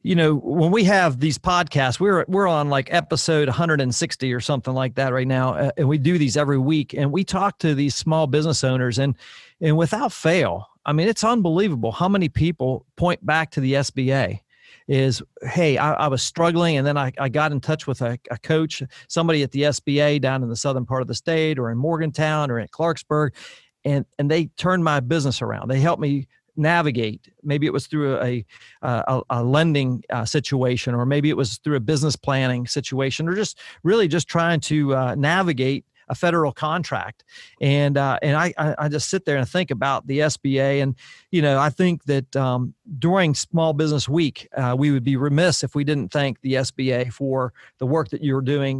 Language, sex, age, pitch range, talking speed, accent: English, male, 40-59, 135-160 Hz, 205 wpm, American